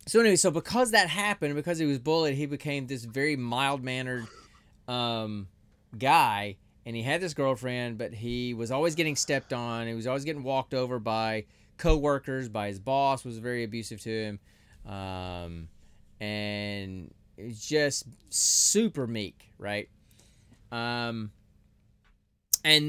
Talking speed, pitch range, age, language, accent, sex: 135 wpm, 110-145 Hz, 30-49, English, American, male